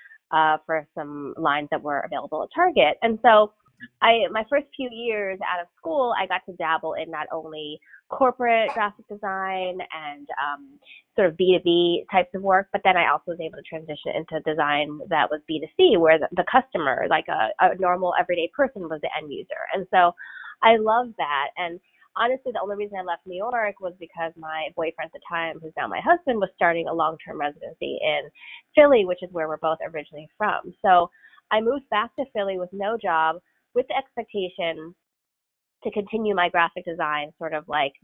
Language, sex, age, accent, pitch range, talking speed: English, female, 20-39, American, 160-215 Hz, 195 wpm